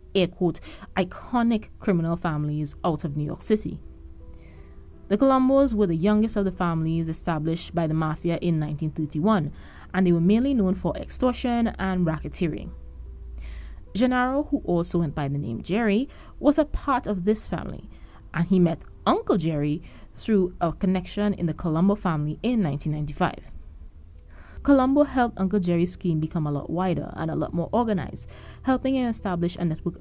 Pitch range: 155-205 Hz